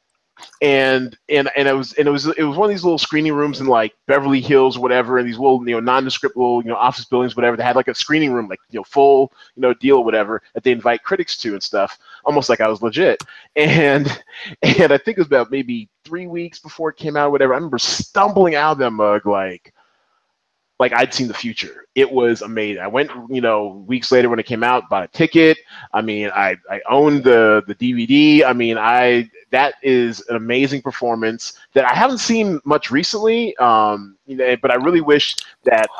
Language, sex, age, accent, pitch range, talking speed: English, male, 20-39, American, 115-155 Hz, 230 wpm